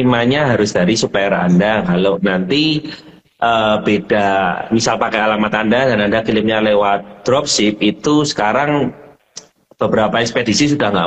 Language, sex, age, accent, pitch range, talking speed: Indonesian, male, 30-49, native, 105-145 Hz, 130 wpm